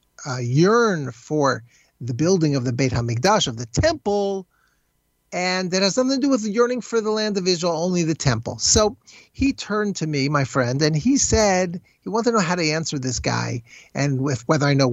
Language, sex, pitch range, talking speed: English, male, 140-195 Hz, 215 wpm